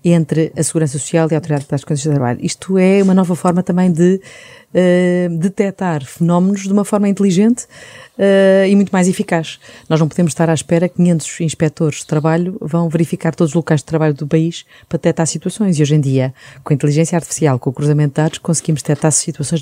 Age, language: 30-49, Portuguese